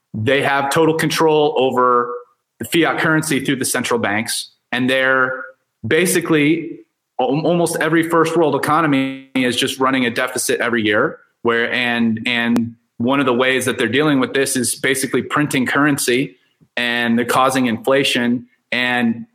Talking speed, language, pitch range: 150 wpm, English, 125-165 Hz